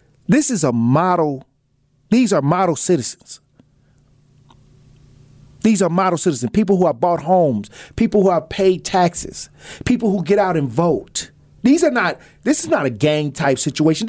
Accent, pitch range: American, 130-195 Hz